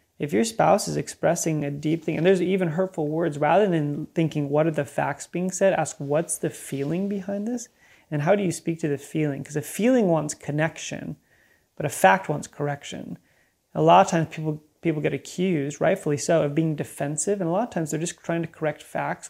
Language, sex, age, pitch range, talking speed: English, male, 30-49, 145-170 Hz, 220 wpm